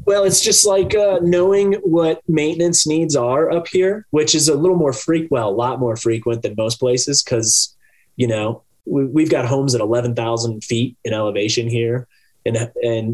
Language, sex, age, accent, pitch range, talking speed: English, male, 30-49, American, 115-140 Hz, 185 wpm